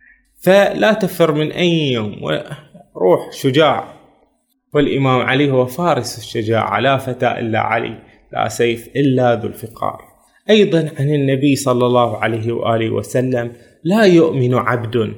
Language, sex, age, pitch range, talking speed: Arabic, male, 20-39, 120-165 Hz, 125 wpm